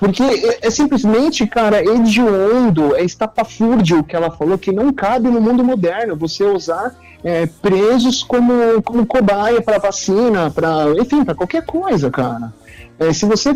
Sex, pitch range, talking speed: male, 155-235 Hz, 155 wpm